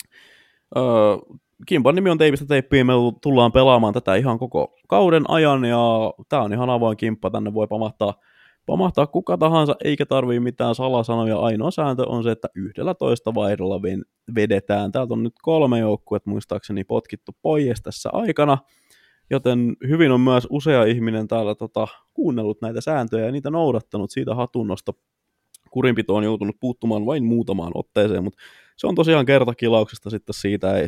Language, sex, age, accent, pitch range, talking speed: Finnish, male, 20-39, native, 110-145 Hz, 155 wpm